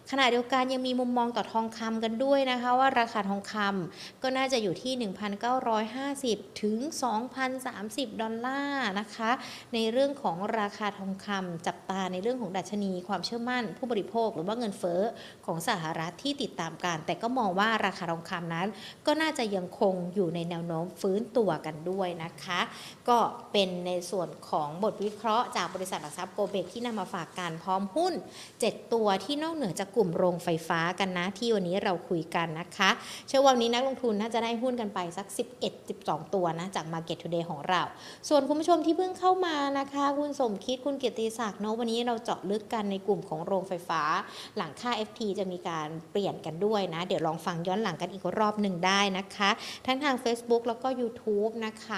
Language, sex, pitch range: Thai, female, 185-245 Hz